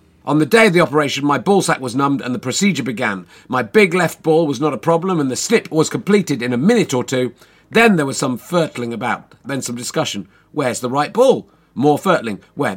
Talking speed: 230 wpm